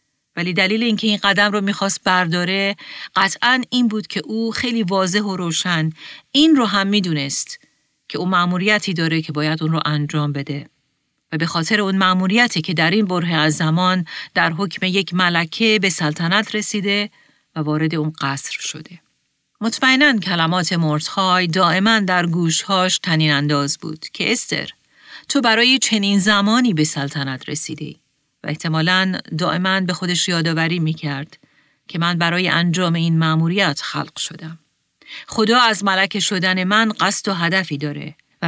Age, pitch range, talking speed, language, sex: 40-59, 160-205 Hz, 155 wpm, Persian, female